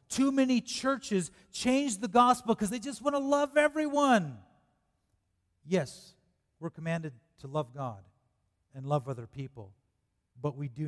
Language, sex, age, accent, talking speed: English, male, 40-59, American, 145 wpm